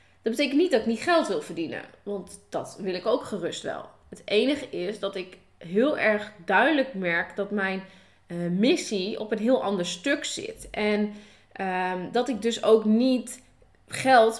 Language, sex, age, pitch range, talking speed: Dutch, female, 20-39, 200-270 Hz, 175 wpm